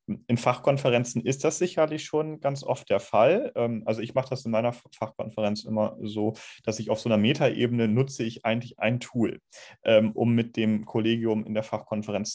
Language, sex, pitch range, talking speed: German, male, 110-135 Hz, 180 wpm